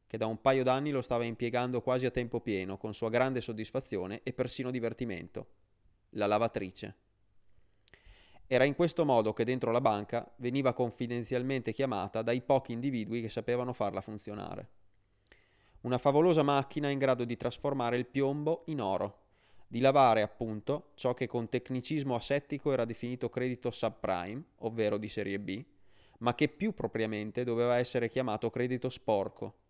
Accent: native